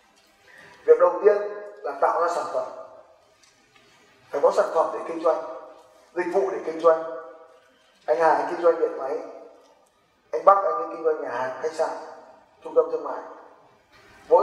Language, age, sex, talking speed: Vietnamese, 20-39, male, 170 wpm